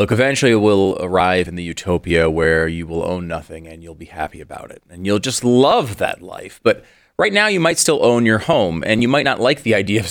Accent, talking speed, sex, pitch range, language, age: American, 250 wpm, male, 85-110 Hz, English, 30-49